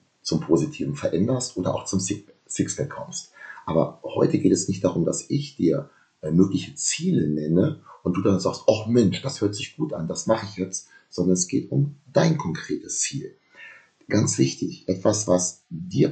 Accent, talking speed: German, 180 wpm